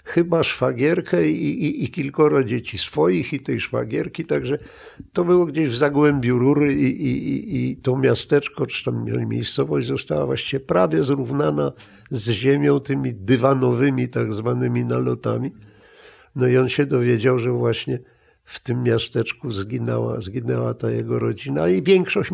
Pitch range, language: 115-150 Hz, Polish